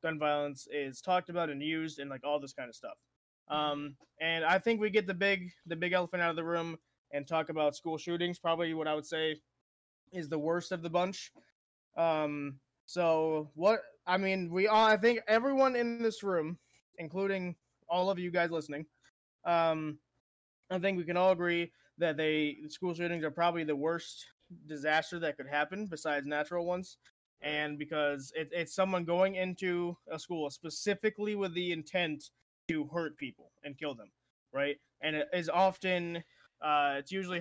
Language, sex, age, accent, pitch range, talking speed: English, male, 20-39, American, 150-180 Hz, 180 wpm